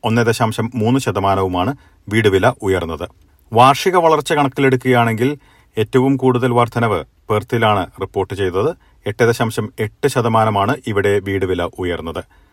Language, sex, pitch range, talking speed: Malayalam, male, 100-125 Hz, 100 wpm